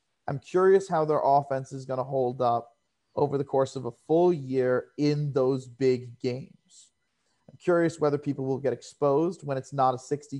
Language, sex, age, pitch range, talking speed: English, male, 30-49, 130-165 Hz, 190 wpm